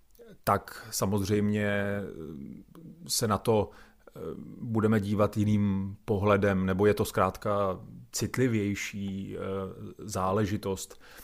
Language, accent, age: Czech, native, 30-49